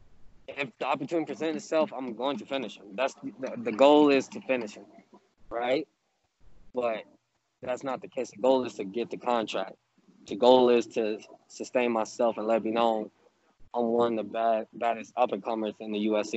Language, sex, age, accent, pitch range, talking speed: English, male, 20-39, American, 105-120 Hz, 185 wpm